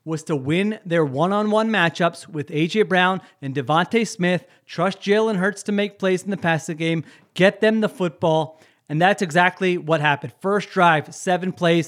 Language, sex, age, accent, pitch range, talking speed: English, male, 30-49, American, 160-210 Hz, 175 wpm